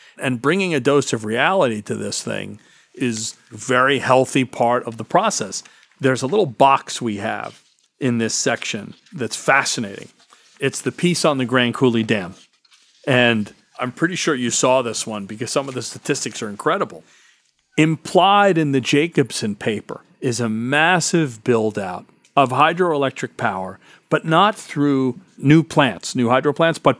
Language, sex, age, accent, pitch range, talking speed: English, male, 40-59, American, 125-155 Hz, 160 wpm